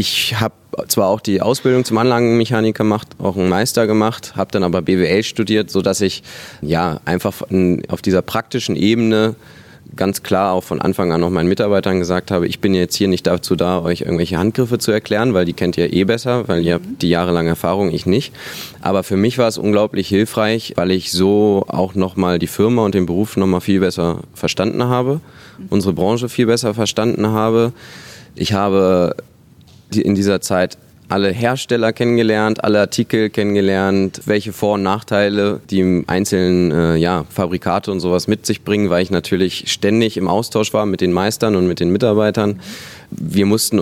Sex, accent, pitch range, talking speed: male, German, 90-110 Hz, 180 wpm